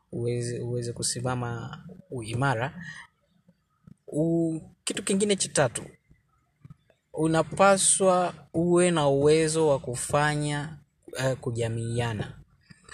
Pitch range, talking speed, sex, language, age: 125-160 Hz, 75 wpm, male, Swahili, 20-39